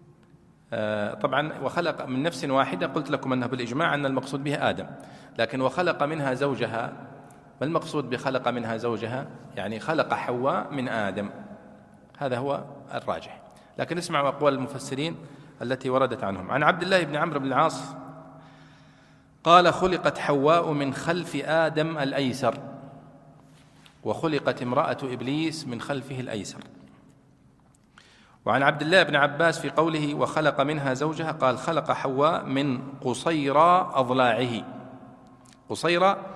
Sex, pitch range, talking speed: male, 130-160 Hz, 120 wpm